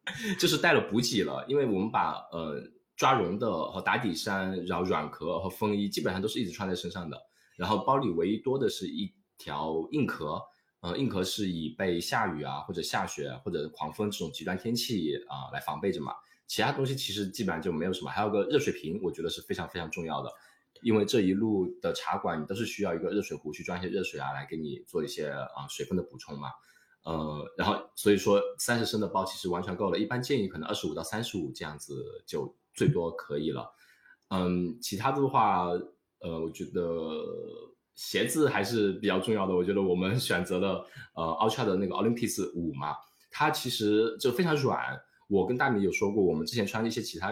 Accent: native